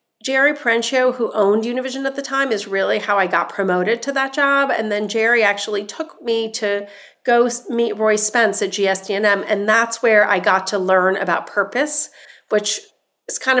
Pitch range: 195-235 Hz